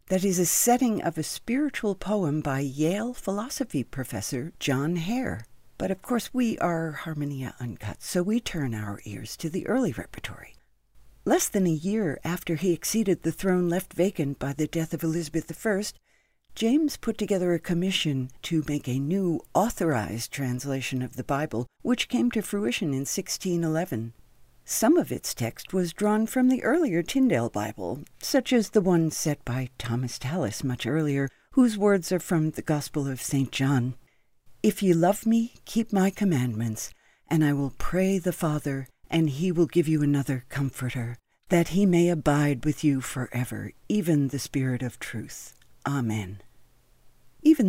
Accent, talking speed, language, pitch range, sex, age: American, 165 wpm, English, 135-195 Hz, female, 60-79